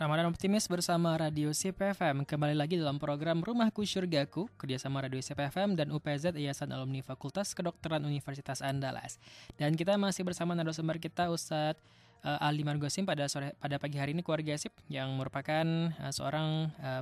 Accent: native